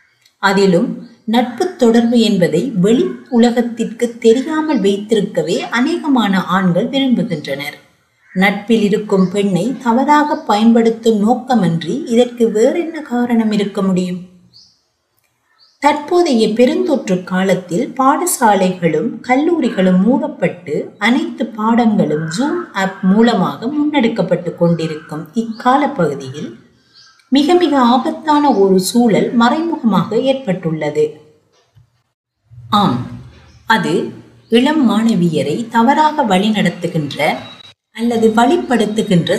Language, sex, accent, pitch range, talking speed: Tamil, female, native, 185-250 Hz, 70 wpm